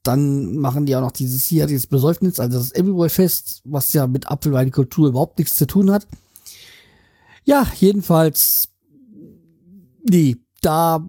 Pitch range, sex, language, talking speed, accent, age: 135-175 Hz, male, German, 150 wpm, German, 40-59